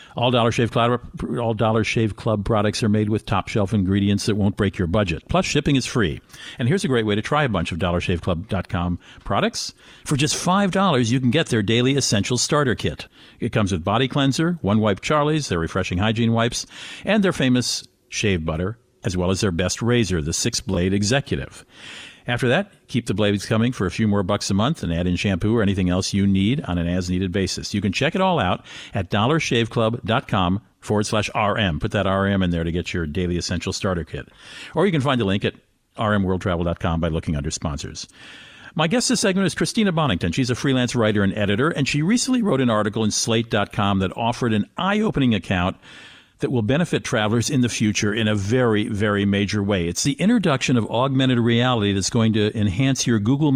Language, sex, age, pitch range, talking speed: English, male, 50-69, 95-125 Hz, 205 wpm